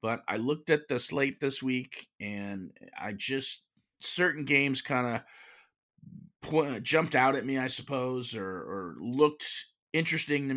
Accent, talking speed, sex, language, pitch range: American, 150 wpm, male, English, 120-150 Hz